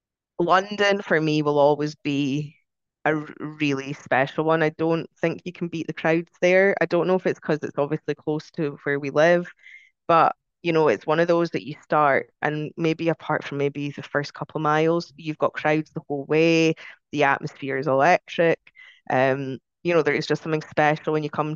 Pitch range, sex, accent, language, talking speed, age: 145-170 Hz, female, British, English, 205 wpm, 20-39